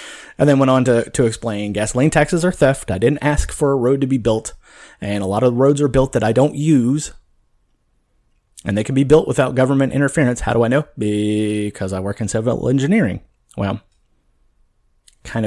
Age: 30-49